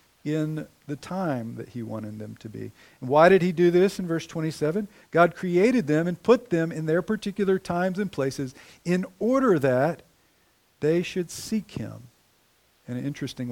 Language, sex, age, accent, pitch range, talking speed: English, male, 50-69, American, 135-190 Hz, 175 wpm